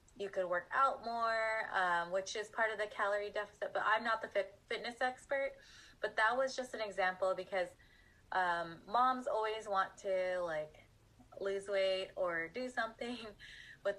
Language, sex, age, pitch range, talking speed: English, female, 20-39, 185-220 Hz, 165 wpm